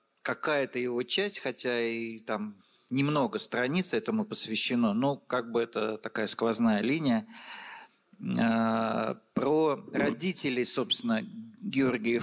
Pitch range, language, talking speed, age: 115-165 Hz, Russian, 105 wpm, 50-69